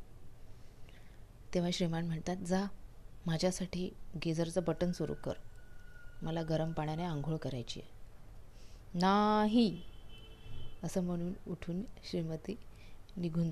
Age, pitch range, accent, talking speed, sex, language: 30-49, 110-180 Hz, native, 95 wpm, female, Marathi